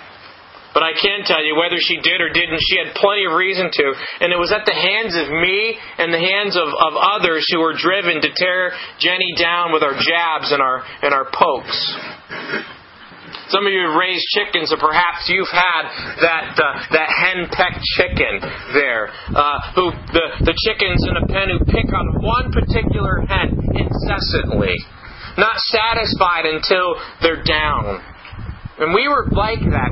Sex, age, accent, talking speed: male, 40-59, American, 175 wpm